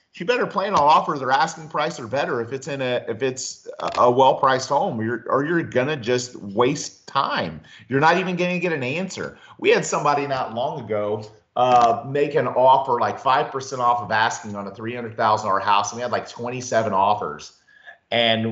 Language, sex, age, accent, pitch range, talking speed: English, male, 30-49, American, 120-160 Hz, 210 wpm